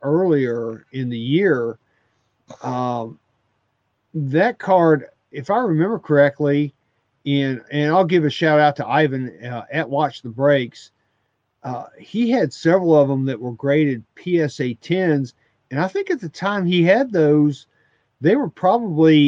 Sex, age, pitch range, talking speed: male, 50-69, 125-160 Hz, 150 wpm